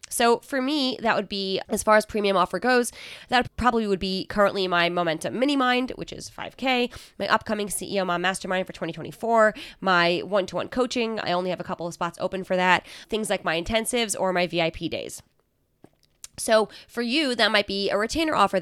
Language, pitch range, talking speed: English, 175-225 Hz, 195 wpm